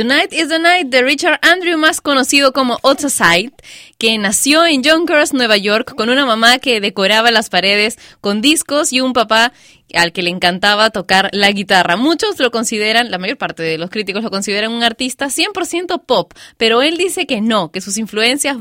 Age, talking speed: 20-39, 195 wpm